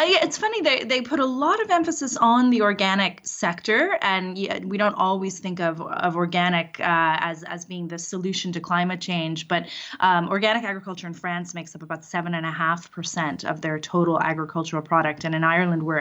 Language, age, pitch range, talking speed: English, 20-39, 165-195 Hz, 185 wpm